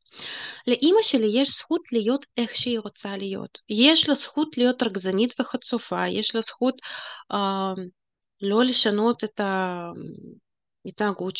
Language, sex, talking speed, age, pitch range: Hebrew, female, 120 wpm, 20-39, 195-260 Hz